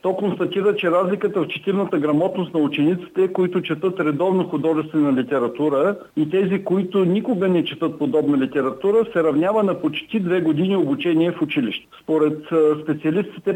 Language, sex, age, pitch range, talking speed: Bulgarian, male, 50-69, 155-190 Hz, 145 wpm